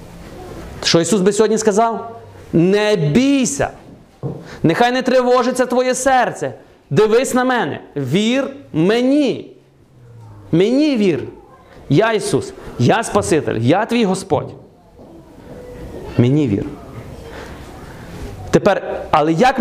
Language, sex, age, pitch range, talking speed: Ukrainian, male, 30-49, 140-215 Hz, 95 wpm